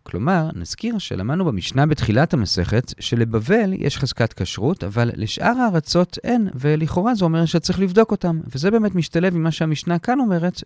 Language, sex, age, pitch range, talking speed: Hebrew, male, 40-59, 120-200 Hz, 160 wpm